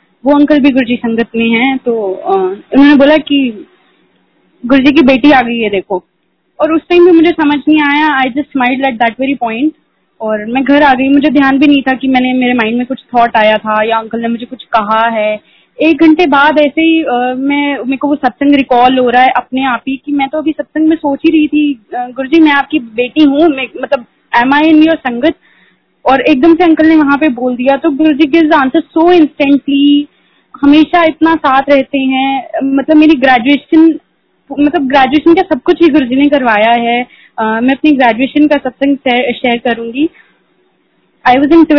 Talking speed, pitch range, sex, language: 175 wpm, 250-300 Hz, female, Hindi